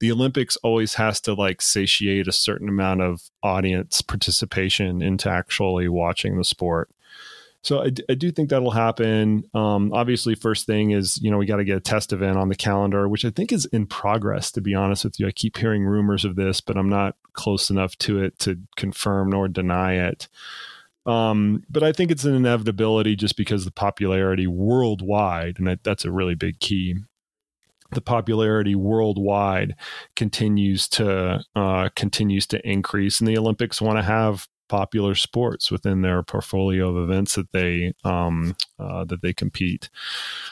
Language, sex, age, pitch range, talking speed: Slovak, male, 30-49, 95-110 Hz, 180 wpm